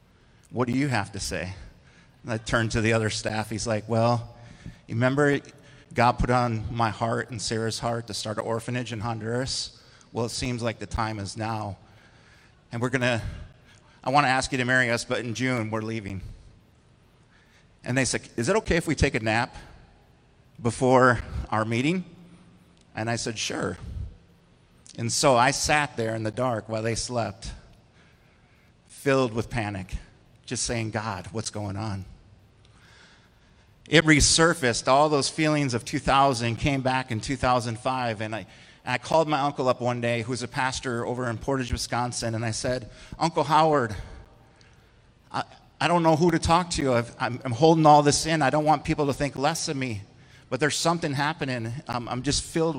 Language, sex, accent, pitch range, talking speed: English, male, American, 115-145 Hz, 180 wpm